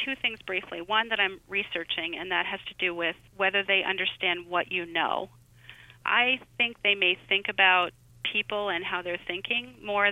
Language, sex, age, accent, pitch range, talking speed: English, female, 30-49, American, 170-205 Hz, 185 wpm